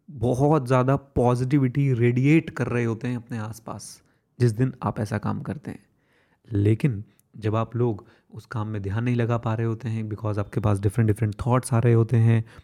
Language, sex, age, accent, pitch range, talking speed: Hindi, male, 30-49, native, 115-130 Hz, 195 wpm